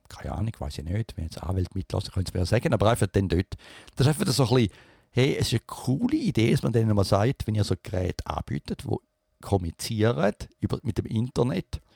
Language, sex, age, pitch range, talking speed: English, male, 50-69, 95-115 Hz, 235 wpm